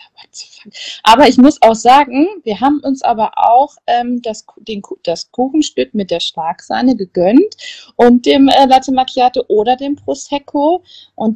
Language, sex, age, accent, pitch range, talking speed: German, female, 20-39, German, 210-270 Hz, 155 wpm